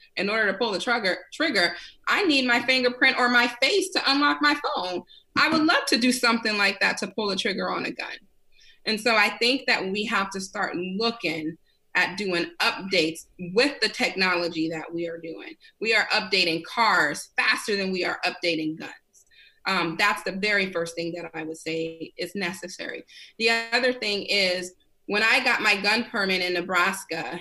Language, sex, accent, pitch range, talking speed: English, female, American, 180-240 Hz, 190 wpm